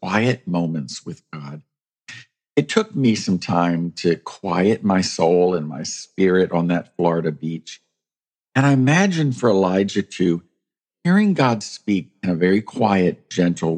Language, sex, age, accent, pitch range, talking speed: English, male, 50-69, American, 85-130 Hz, 150 wpm